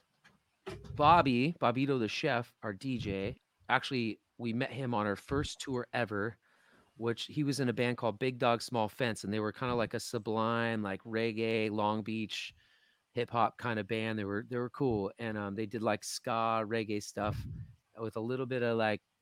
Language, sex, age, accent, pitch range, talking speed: English, male, 30-49, American, 110-130 Hz, 190 wpm